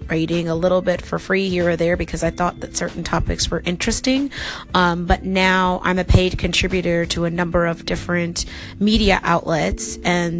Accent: American